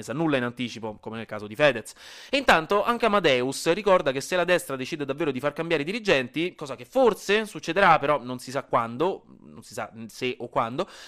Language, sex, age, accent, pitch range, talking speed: Italian, male, 30-49, native, 135-210 Hz, 215 wpm